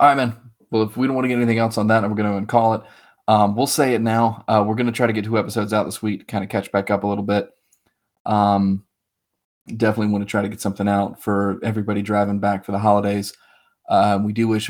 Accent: American